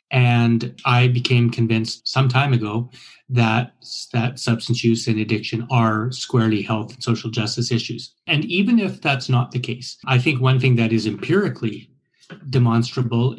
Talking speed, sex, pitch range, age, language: 155 wpm, male, 115-130 Hz, 30-49, English